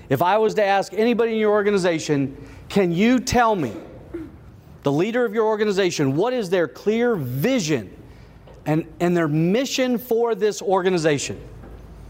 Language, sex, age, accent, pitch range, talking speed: English, male, 40-59, American, 140-195 Hz, 150 wpm